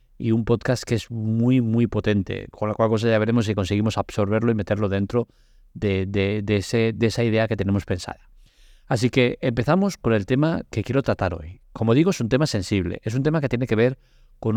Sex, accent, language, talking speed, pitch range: male, Spanish, Italian, 225 wpm, 105-130 Hz